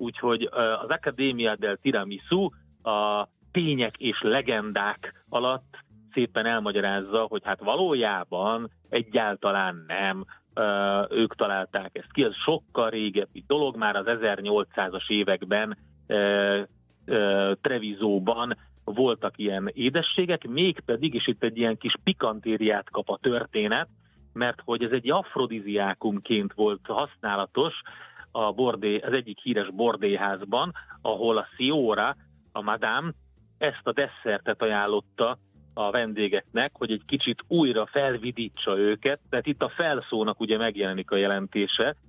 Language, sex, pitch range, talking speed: Hungarian, male, 100-120 Hz, 115 wpm